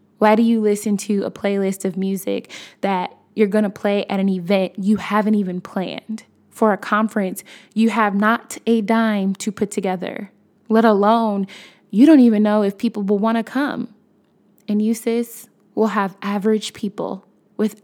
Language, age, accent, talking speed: English, 20-39, American, 175 wpm